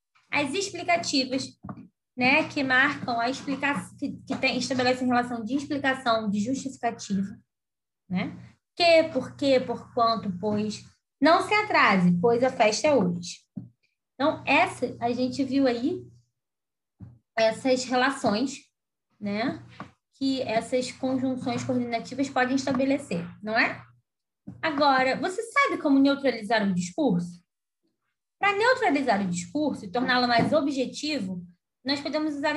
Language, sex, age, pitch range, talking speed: Portuguese, female, 20-39, 210-285 Hz, 120 wpm